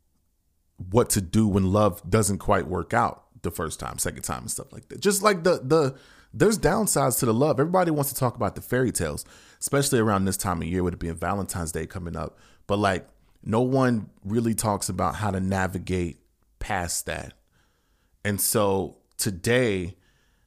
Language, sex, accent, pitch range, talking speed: English, male, American, 90-115 Hz, 190 wpm